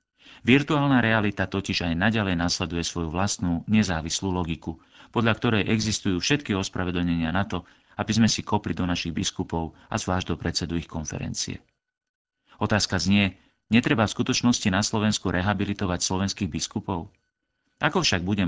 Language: Czech